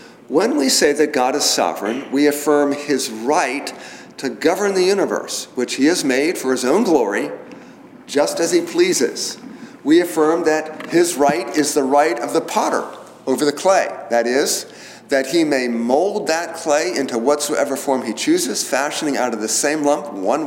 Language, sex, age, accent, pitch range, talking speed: English, male, 50-69, American, 125-165 Hz, 180 wpm